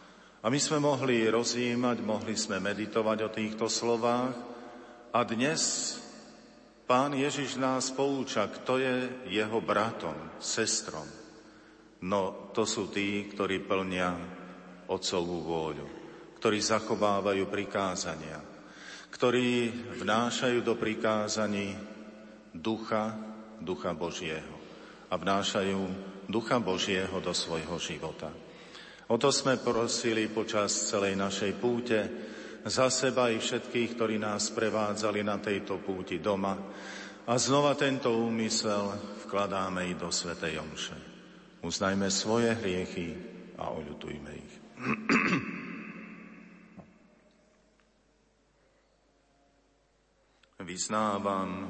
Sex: male